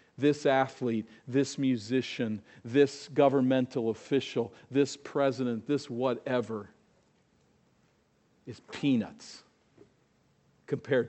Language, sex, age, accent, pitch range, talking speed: English, male, 50-69, American, 115-150 Hz, 75 wpm